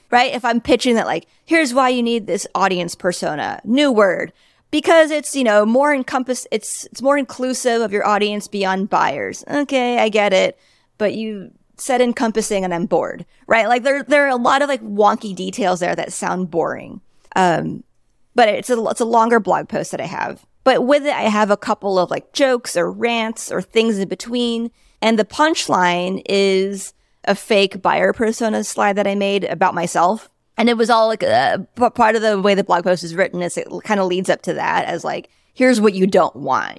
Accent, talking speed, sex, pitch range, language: American, 210 wpm, female, 190-250 Hz, English